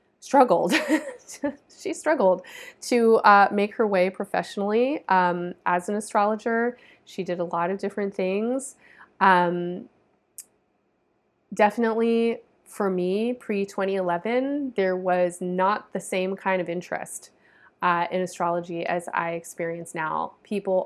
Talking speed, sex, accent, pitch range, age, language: 120 wpm, female, American, 175-210 Hz, 20-39, English